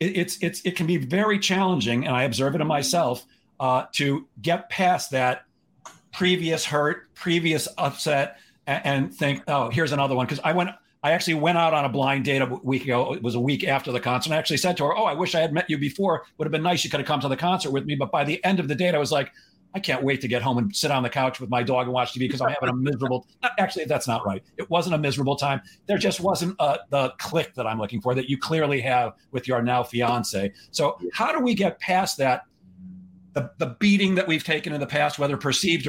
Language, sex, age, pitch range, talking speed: English, male, 50-69, 130-165 Hz, 260 wpm